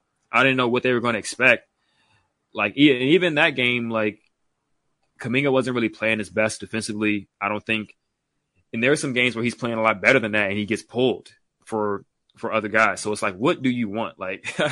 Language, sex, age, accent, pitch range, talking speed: English, male, 20-39, American, 105-120 Hz, 220 wpm